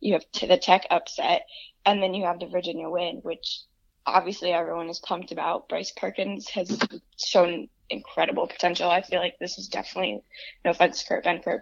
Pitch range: 175-215 Hz